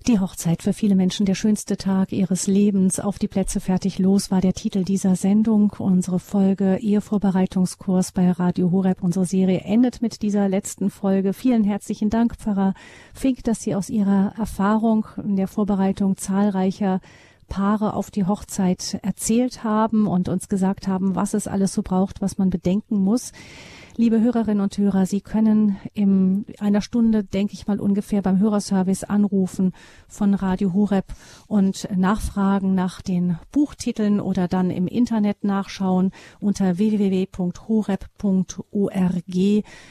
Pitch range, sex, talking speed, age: 185-205 Hz, female, 145 wpm, 40-59